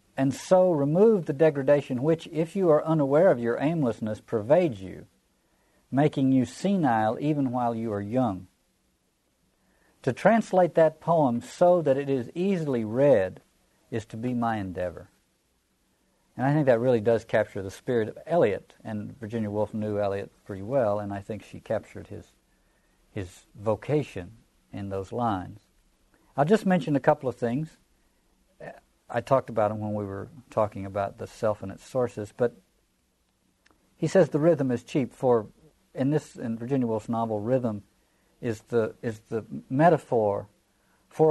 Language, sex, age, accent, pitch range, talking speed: English, male, 50-69, American, 105-150 Hz, 160 wpm